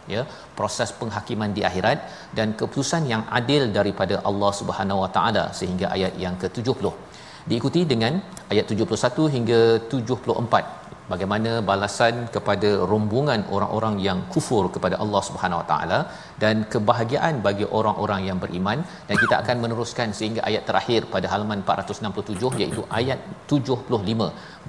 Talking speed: 135 wpm